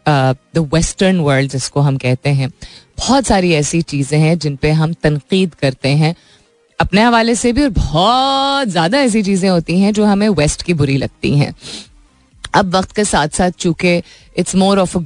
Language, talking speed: Hindi, 185 wpm